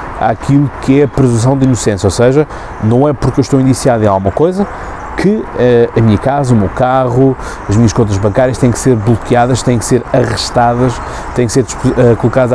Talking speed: 205 wpm